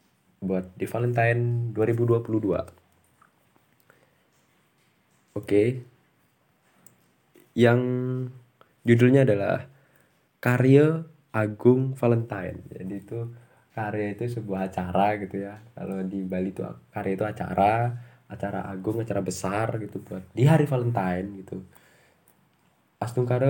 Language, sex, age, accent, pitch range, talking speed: Indonesian, male, 20-39, native, 105-130 Hz, 95 wpm